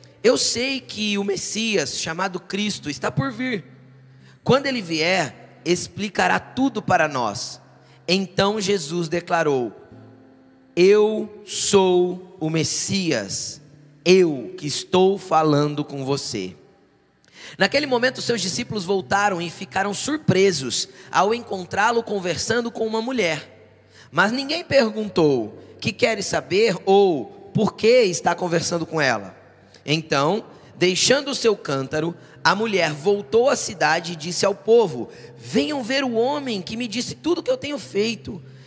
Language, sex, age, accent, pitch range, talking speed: Portuguese, male, 20-39, Brazilian, 150-225 Hz, 130 wpm